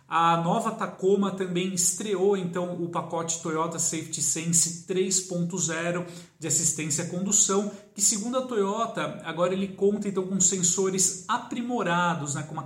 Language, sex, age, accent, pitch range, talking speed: Portuguese, male, 40-59, Brazilian, 165-195 Hz, 140 wpm